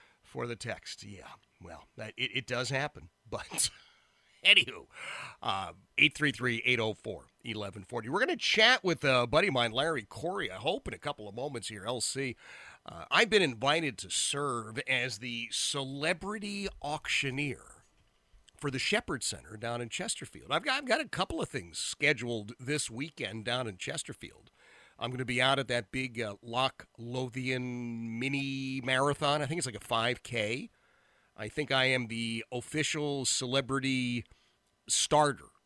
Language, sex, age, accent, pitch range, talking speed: English, male, 40-59, American, 115-145 Hz, 155 wpm